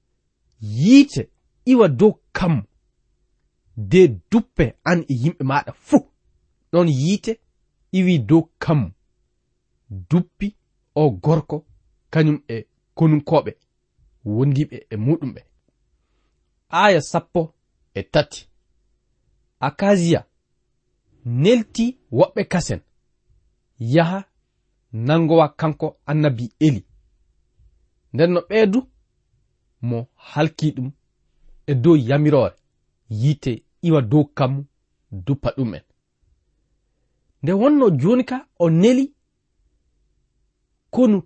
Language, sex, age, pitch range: English, male, 40-59, 115-180 Hz